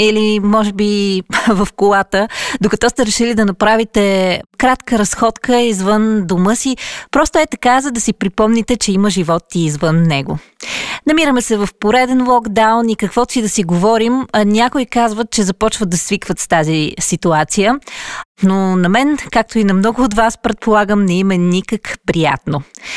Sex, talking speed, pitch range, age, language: female, 165 wpm, 185-240 Hz, 20-39, Bulgarian